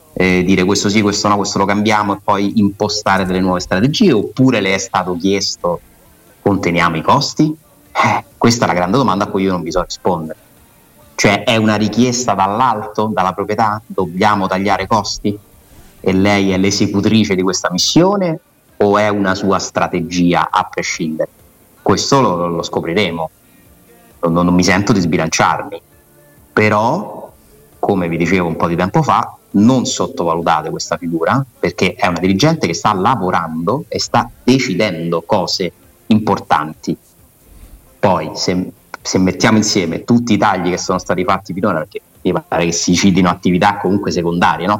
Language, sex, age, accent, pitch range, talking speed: Italian, male, 30-49, native, 90-105 Hz, 160 wpm